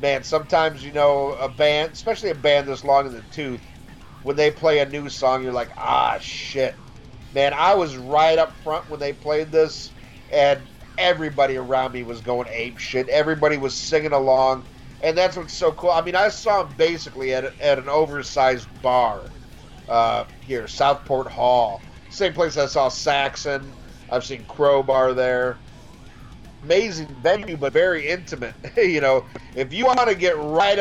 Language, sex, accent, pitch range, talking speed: English, male, American, 130-165 Hz, 170 wpm